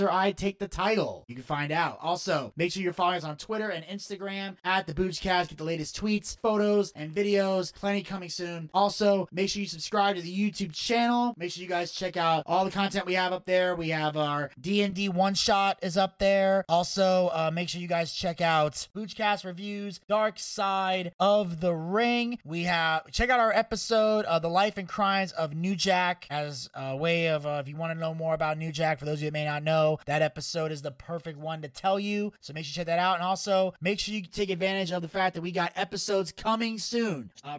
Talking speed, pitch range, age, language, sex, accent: 230 wpm, 155-195 Hz, 30-49, English, male, American